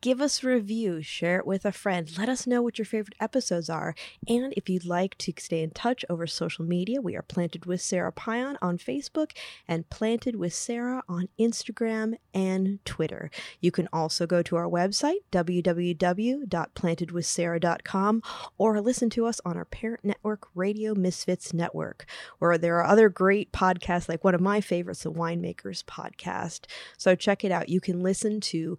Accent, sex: American, female